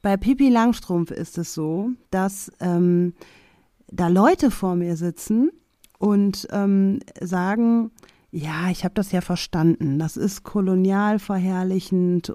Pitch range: 175-210 Hz